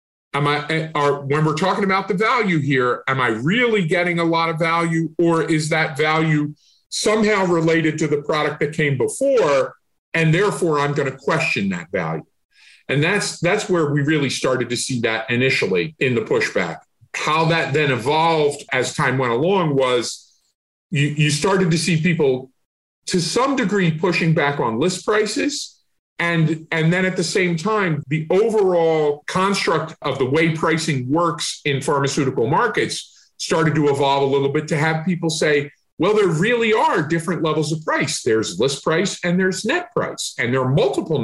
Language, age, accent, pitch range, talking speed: English, 40-59, American, 150-185 Hz, 180 wpm